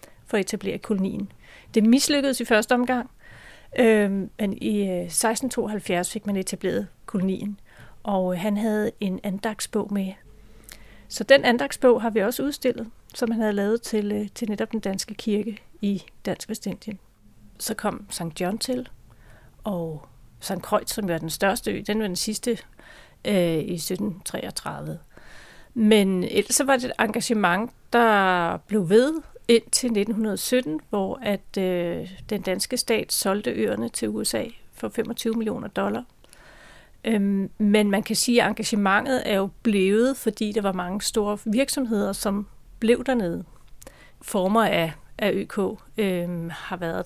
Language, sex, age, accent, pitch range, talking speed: English, female, 40-59, Danish, 190-230 Hz, 150 wpm